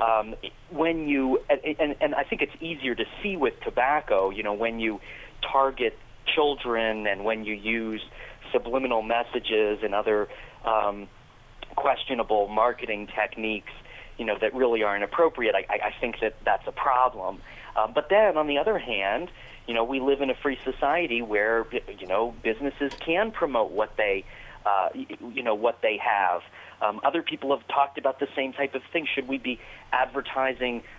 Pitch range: 110-145 Hz